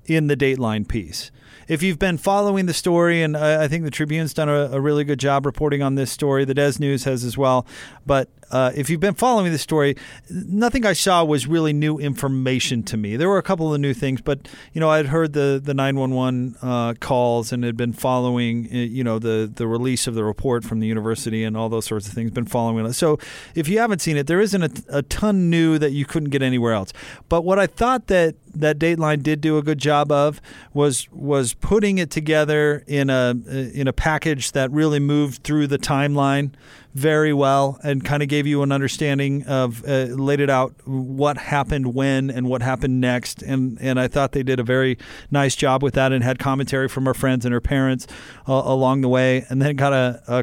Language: English